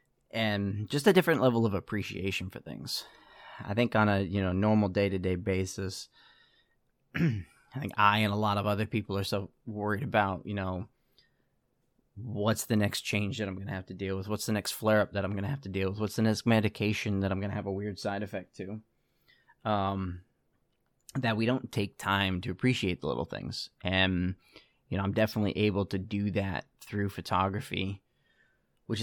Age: 20-39